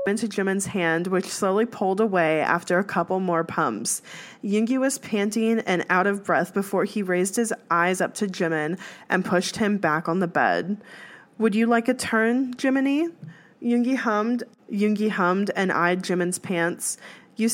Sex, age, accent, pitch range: female, 20-39, American, 175-220 Hz